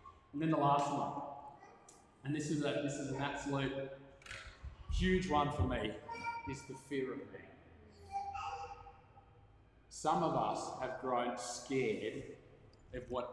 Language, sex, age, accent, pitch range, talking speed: English, male, 30-49, Australian, 105-135 Hz, 135 wpm